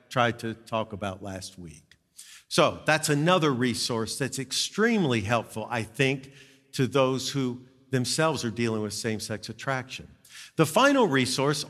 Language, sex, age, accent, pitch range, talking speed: English, male, 50-69, American, 120-170 Hz, 140 wpm